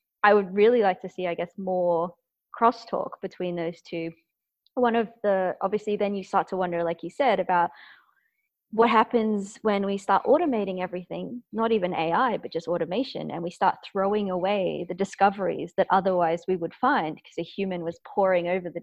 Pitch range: 170-200 Hz